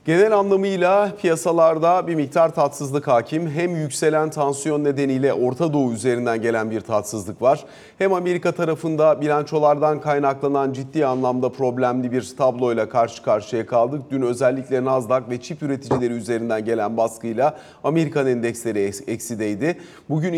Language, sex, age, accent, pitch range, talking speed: Turkish, male, 40-59, native, 130-165 Hz, 130 wpm